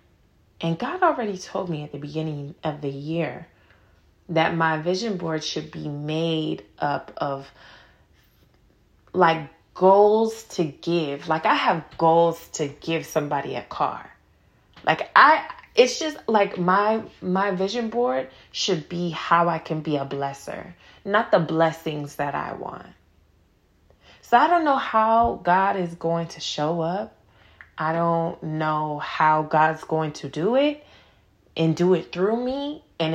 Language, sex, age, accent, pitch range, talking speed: English, female, 20-39, American, 155-185 Hz, 150 wpm